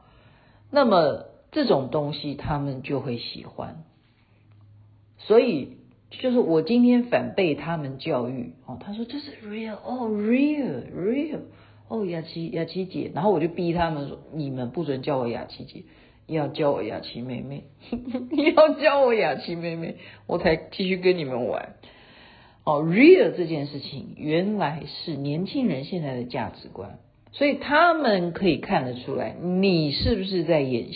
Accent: native